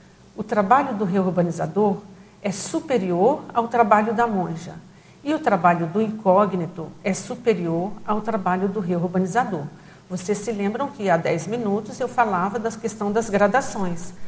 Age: 50-69